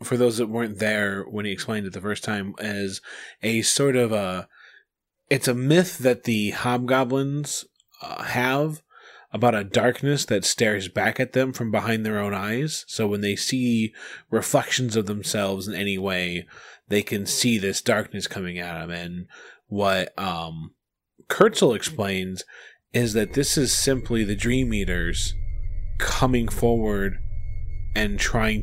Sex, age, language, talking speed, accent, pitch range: male, 20-39, English, 155 wpm, American, 95-115 Hz